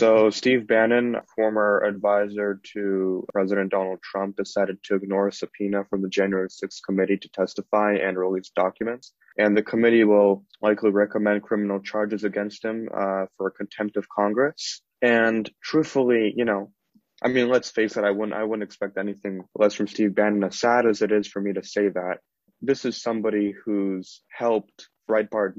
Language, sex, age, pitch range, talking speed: English, male, 20-39, 100-110 Hz, 170 wpm